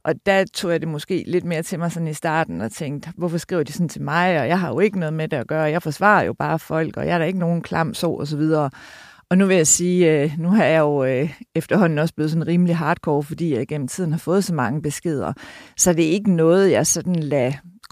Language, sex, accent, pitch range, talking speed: Danish, female, native, 155-180 Hz, 265 wpm